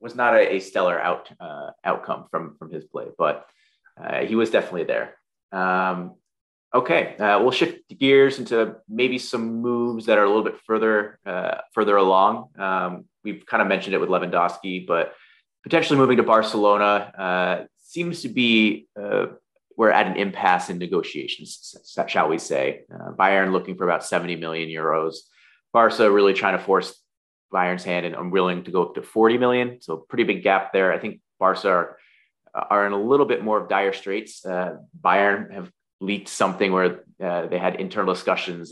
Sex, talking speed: male, 180 wpm